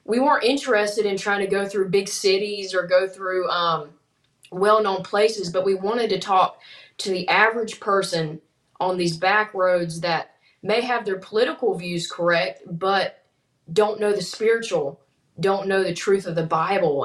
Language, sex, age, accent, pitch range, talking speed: English, female, 20-39, American, 175-215 Hz, 170 wpm